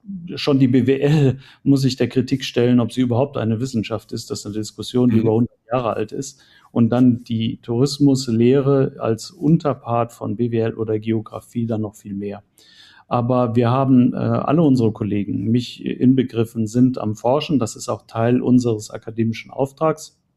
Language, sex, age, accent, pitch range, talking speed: German, male, 40-59, German, 115-135 Hz, 160 wpm